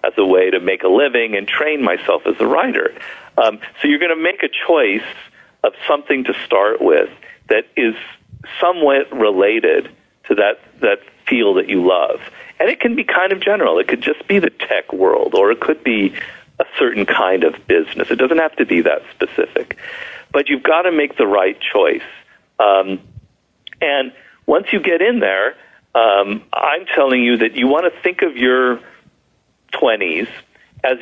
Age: 50-69